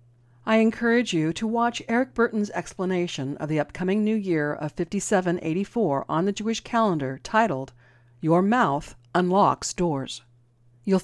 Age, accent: 50-69, American